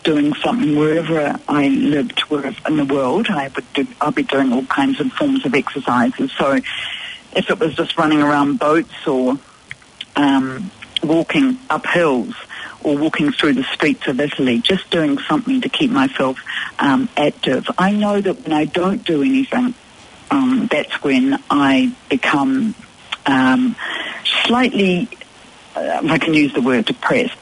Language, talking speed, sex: English, 145 wpm, female